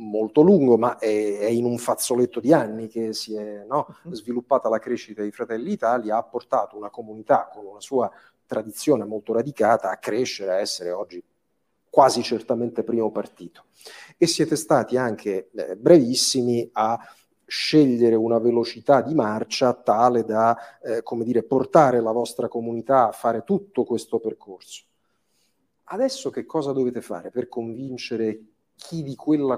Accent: native